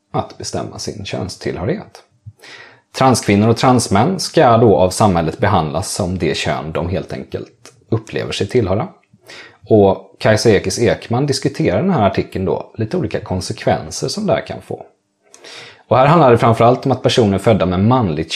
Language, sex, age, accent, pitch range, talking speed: Swedish, male, 30-49, native, 90-115 Hz, 160 wpm